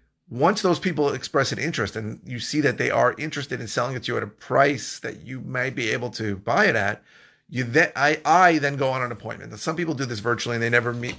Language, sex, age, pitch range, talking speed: English, male, 40-59, 115-145 Hz, 255 wpm